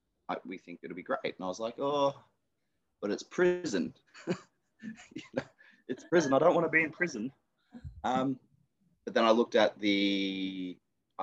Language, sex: English, male